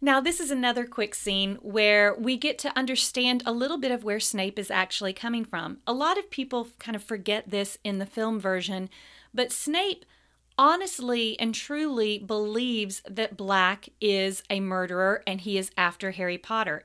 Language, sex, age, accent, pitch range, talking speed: English, female, 30-49, American, 195-250 Hz, 180 wpm